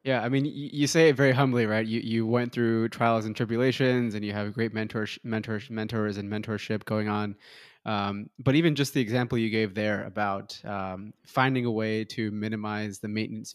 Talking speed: 200 wpm